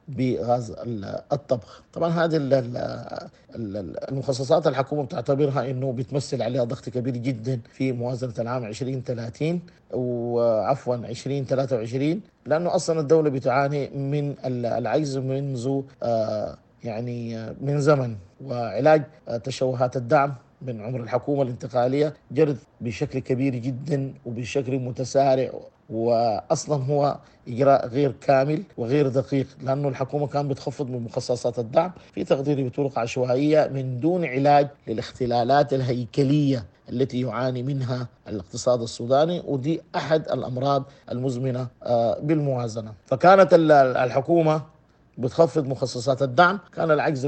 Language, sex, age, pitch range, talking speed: English, male, 50-69, 125-145 Hz, 105 wpm